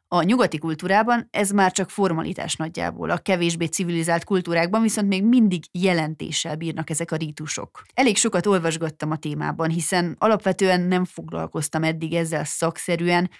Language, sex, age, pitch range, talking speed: Hungarian, female, 30-49, 165-200 Hz, 145 wpm